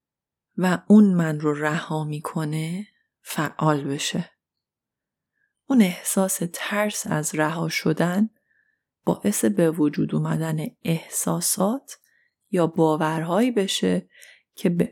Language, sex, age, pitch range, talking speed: Persian, female, 30-49, 160-195 Hz, 95 wpm